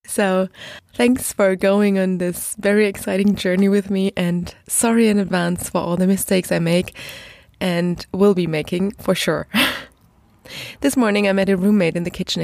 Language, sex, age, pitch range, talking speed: German, female, 20-39, 190-260 Hz, 175 wpm